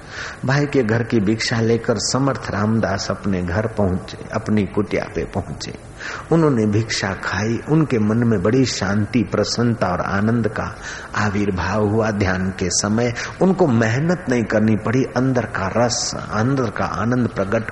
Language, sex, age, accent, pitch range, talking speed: Hindi, male, 50-69, native, 105-130 Hz, 150 wpm